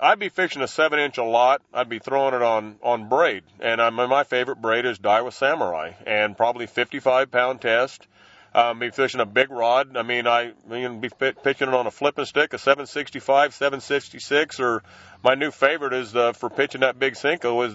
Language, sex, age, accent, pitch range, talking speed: English, male, 40-59, American, 120-165 Hz, 215 wpm